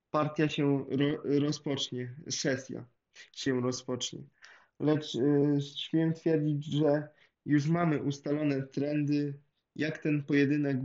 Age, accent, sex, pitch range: 20-39, native, male, 130-145 Hz